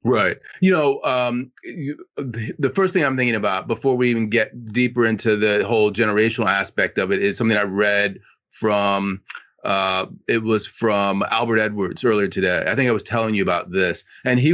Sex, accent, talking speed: male, American, 190 wpm